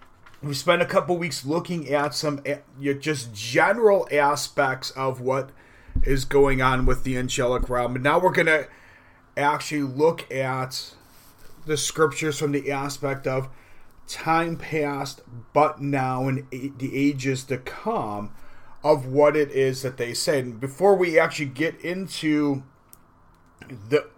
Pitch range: 130-150 Hz